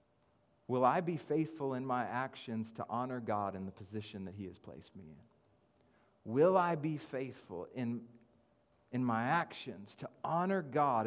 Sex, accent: male, American